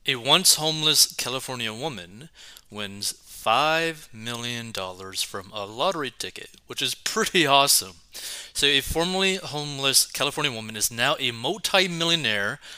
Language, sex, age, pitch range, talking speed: English, male, 30-49, 105-150 Hz, 120 wpm